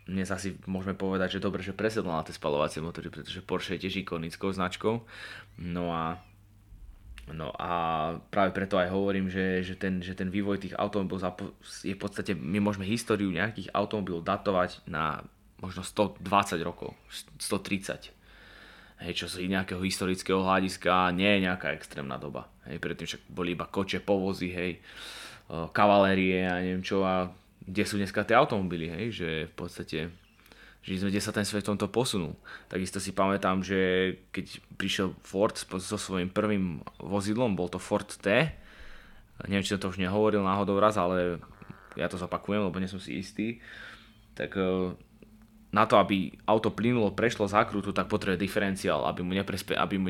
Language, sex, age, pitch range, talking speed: English, male, 20-39, 90-100 Hz, 165 wpm